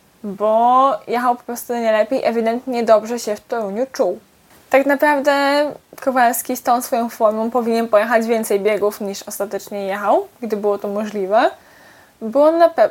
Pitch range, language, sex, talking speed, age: 215-270 Hz, Polish, female, 145 wpm, 10-29